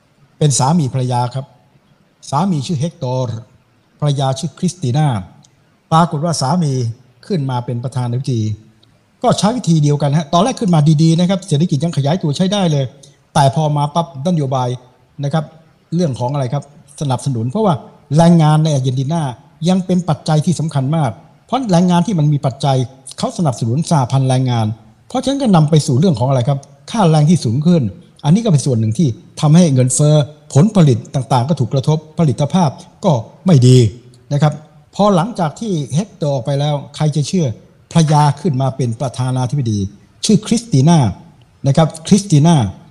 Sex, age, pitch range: male, 60-79, 130-170 Hz